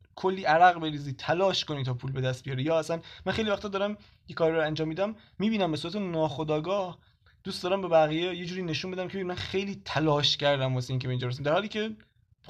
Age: 20-39